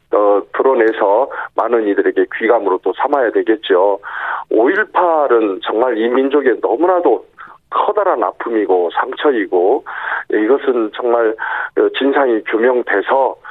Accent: native